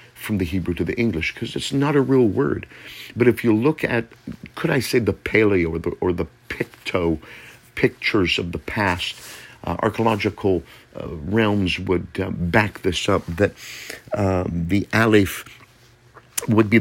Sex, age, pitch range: male, 50-69, 95-115 Hz